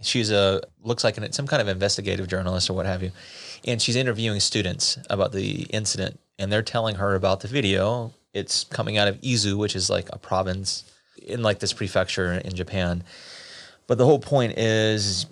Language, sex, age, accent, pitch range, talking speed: English, male, 30-49, American, 95-120 Hz, 190 wpm